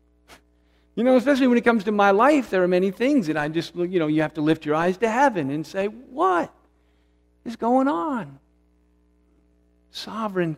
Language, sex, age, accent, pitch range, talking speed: English, male, 50-69, American, 170-250 Hz, 185 wpm